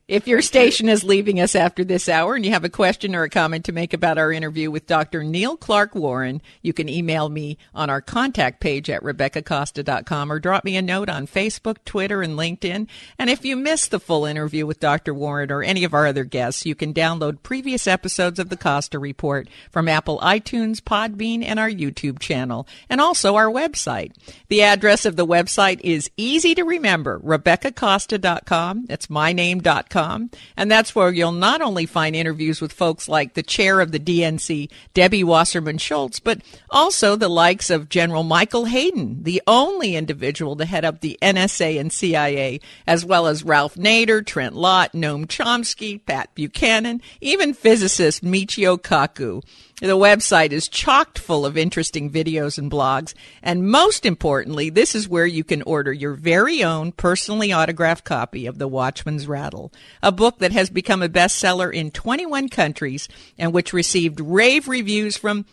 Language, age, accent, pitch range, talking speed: English, 50-69, American, 155-205 Hz, 180 wpm